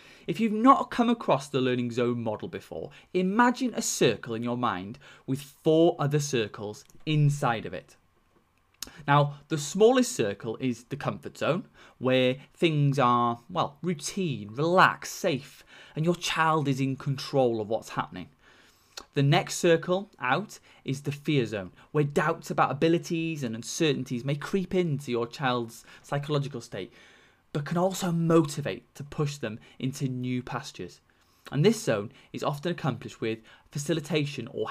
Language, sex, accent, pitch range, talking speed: English, male, British, 125-165 Hz, 150 wpm